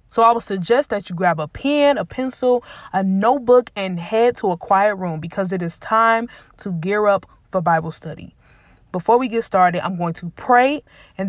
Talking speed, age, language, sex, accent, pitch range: 200 wpm, 20-39, English, female, American, 175-220 Hz